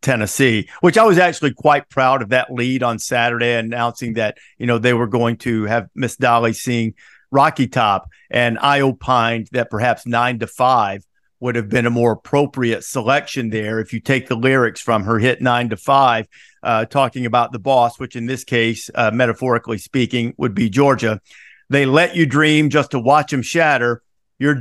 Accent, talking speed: American, 190 wpm